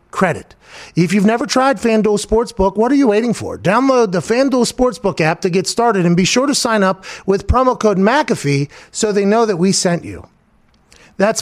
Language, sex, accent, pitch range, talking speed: English, male, American, 150-210 Hz, 200 wpm